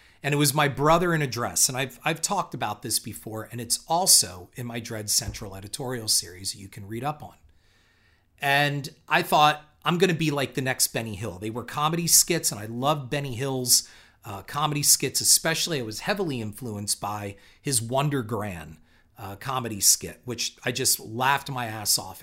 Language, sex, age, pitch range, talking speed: English, male, 40-59, 110-150 Hz, 195 wpm